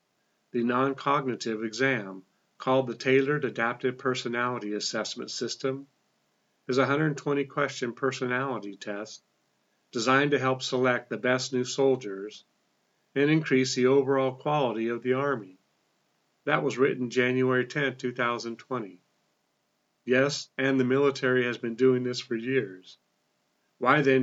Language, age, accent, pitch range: English, 50-69, American, 115-135 Hz